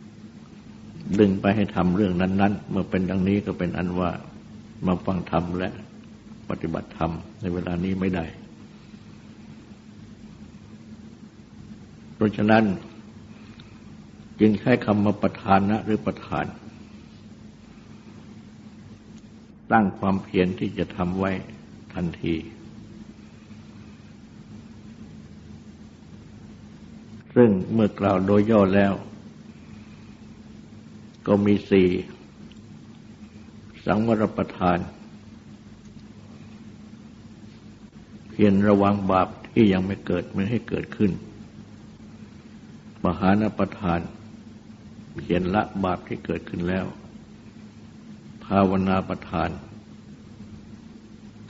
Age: 60-79